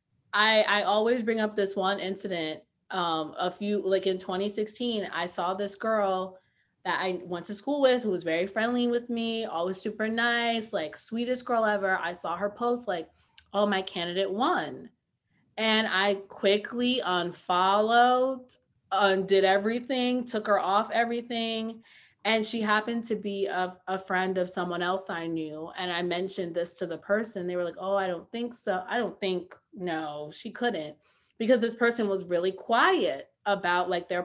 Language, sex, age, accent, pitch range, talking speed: English, female, 20-39, American, 185-235 Hz, 175 wpm